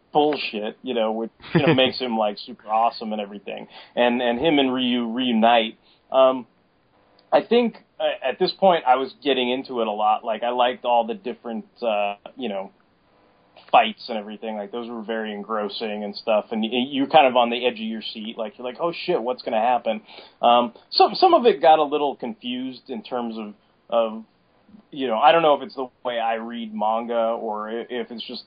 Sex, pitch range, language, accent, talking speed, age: male, 115-135 Hz, English, American, 210 wpm, 30-49